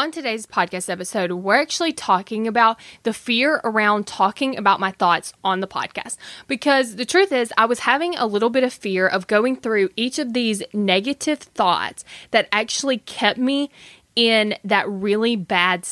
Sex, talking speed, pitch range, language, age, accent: female, 175 wpm, 200-245 Hz, English, 20-39, American